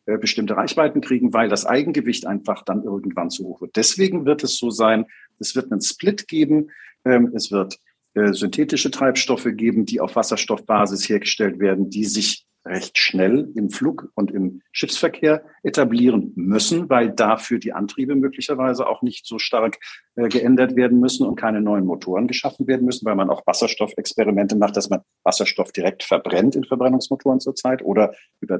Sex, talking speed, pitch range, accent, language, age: male, 160 wpm, 105-130 Hz, German, German, 50-69